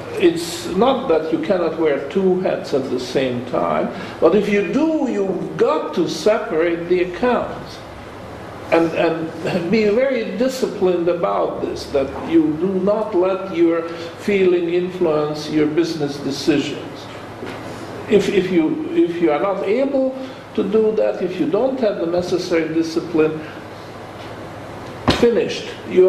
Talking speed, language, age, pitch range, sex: 140 wpm, English, 50-69, 165-225 Hz, male